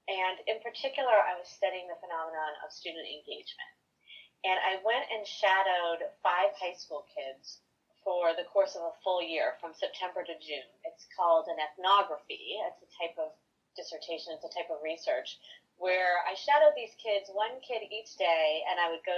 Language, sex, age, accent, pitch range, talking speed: English, female, 30-49, American, 170-230 Hz, 180 wpm